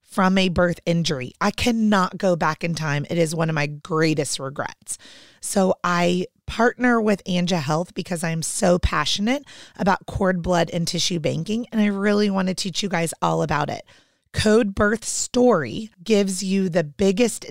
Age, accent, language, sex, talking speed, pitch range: 30-49, American, English, female, 175 wpm, 170-205 Hz